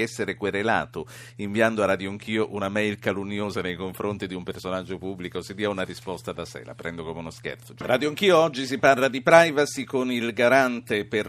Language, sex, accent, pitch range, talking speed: Italian, male, native, 100-120 Hz, 200 wpm